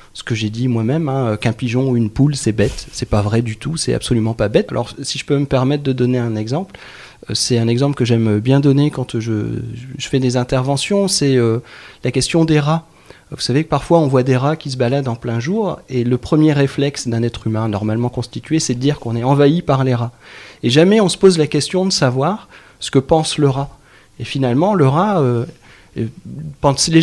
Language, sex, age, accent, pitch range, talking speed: French, male, 30-49, French, 120-155 Hz, 230 wpm